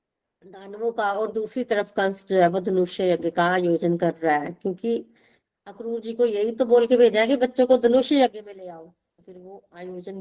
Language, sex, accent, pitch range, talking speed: Hindi, female, native, 185-255 Hz, 210 wpm